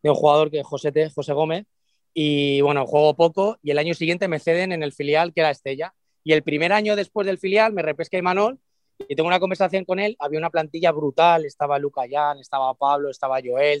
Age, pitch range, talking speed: 20-39, 150-195 Hz, 225 wpm